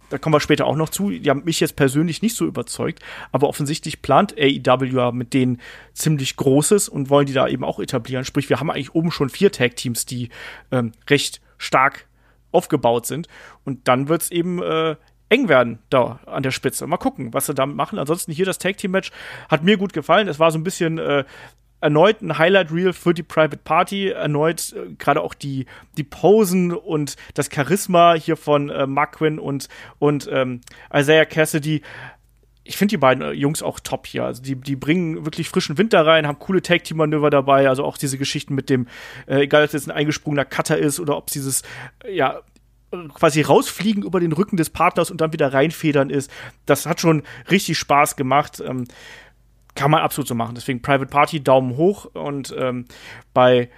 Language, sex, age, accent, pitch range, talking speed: German, male, 40-59, German, 135-165 Hz, 195 wpm